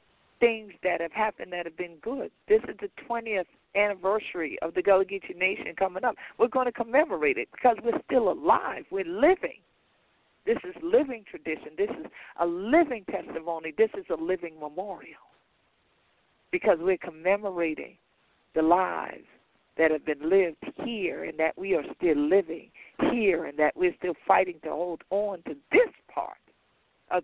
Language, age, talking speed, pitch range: English, 50-69, 165 wpm, 170-235 Hz